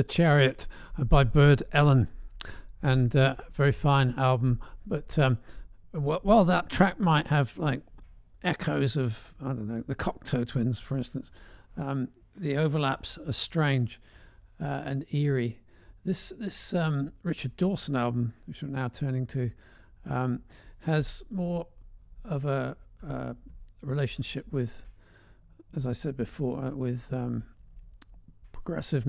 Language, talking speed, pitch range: English, 130 wpm, 115-145 Hz